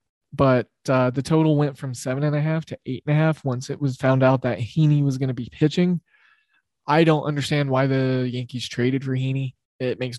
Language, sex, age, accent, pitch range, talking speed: English, male, 20-39, American, 130-160 Hz, 190 wpm